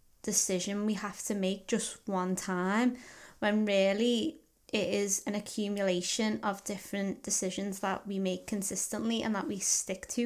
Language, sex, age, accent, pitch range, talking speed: English, female, 20-39, British, 200-230 Hz, 150 wpm